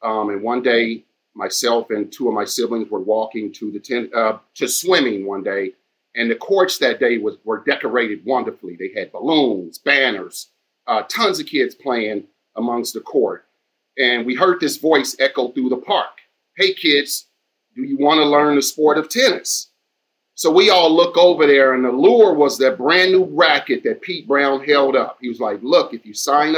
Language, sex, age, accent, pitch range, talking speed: English, male, 40-59, American, 115-150 Hz, 195 wpm